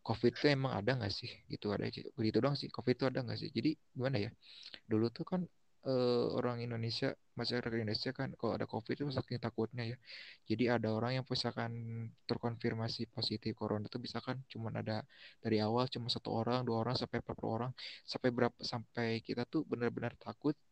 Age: 20-39